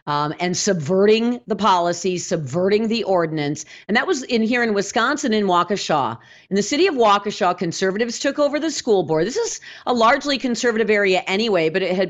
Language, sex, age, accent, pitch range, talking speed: English, female, 40-59, American, 185-275 Hz, 190 wpm